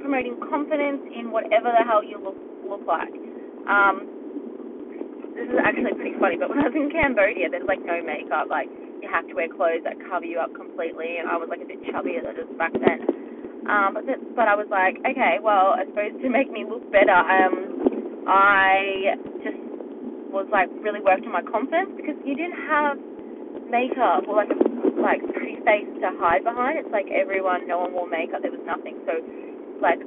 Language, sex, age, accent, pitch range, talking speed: English, female, 20-39, Australian, 235-350 Hz, 200 wpm